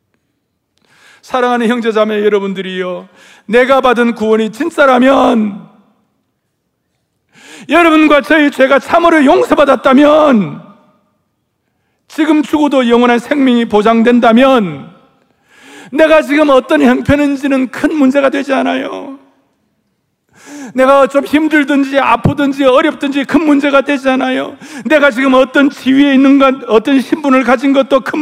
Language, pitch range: Korean, 215-285 Hz